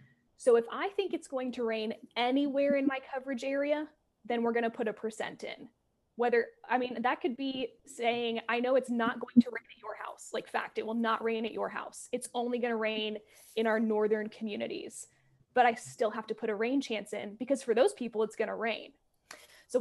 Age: 20-39